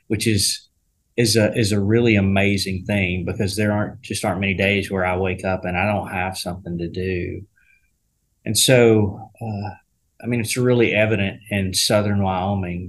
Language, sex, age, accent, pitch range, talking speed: English, male, 30-49, American, 95-110 Hz, 175 wpm